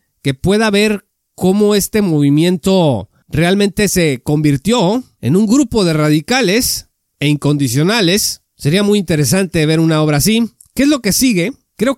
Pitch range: 145-200 Hz